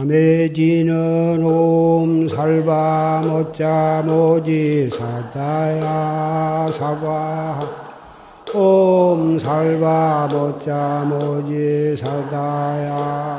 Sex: male